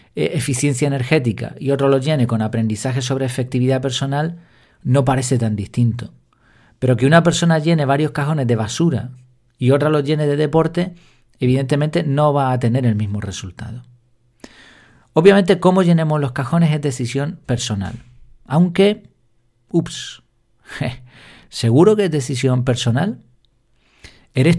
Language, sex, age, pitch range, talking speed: Spanish, male, 40-59, 120-155 Hz, 130 wpm